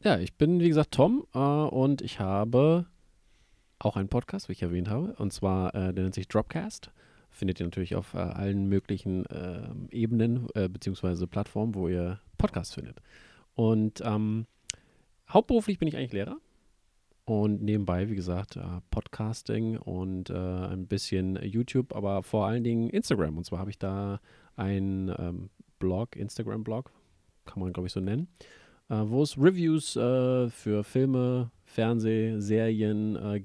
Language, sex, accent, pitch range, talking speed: German, male, German, 95-125 Hz, 155 wpm